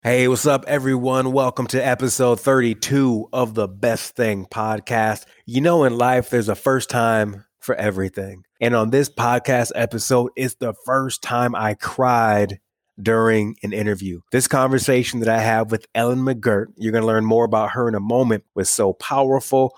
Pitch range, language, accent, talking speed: 110-130 Hz, English, American, 175 wpm